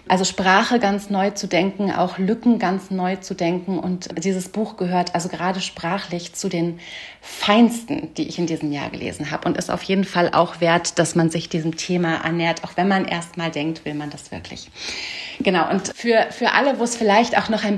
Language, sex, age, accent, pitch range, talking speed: German, female, 30-49, German, 180-210 Hz, 210 wpm